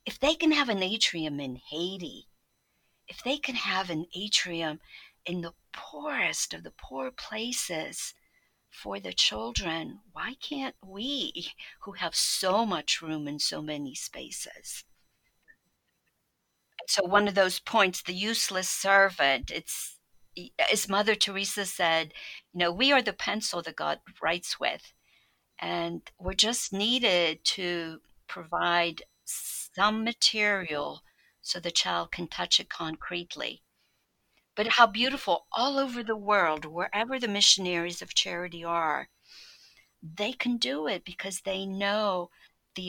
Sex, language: female, English